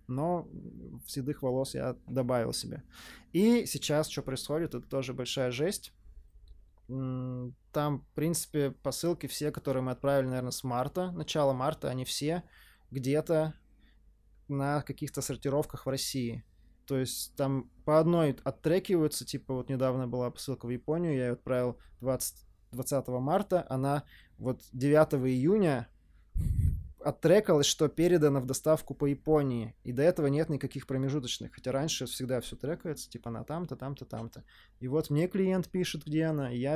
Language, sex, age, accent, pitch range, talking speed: Russian, male, 20-39, native, 125-150 Hz, 145 wpm